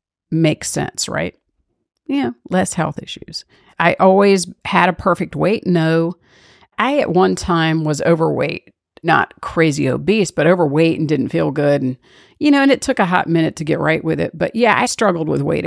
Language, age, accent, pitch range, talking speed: English, 50-69, American, 150-185 Hz, 190 wpm